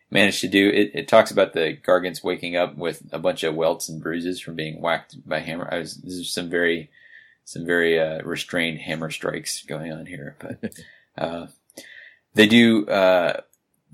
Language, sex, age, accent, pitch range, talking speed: English, male, 20-39, American, 80-90 Hz, 185 wpm